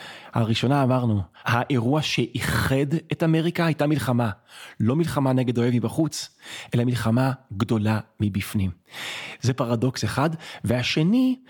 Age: 30-49